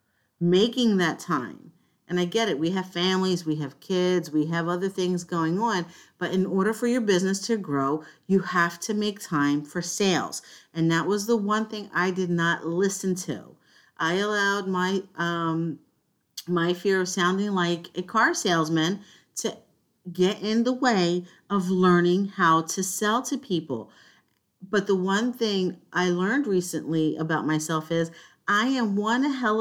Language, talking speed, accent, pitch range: English, 170 wpm, American, 170-210 Hz